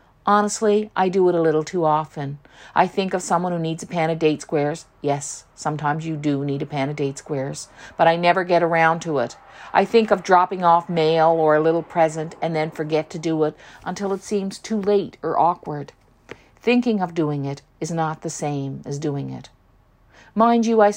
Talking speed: 210 wpm